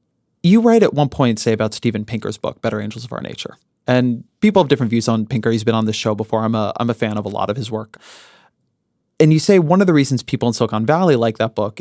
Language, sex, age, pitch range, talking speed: English, male, 30-49, 110-135 Hz, 265 wpm